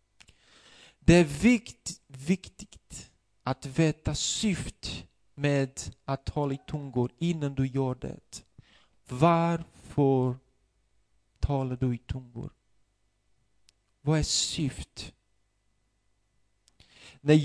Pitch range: 110-155 Hz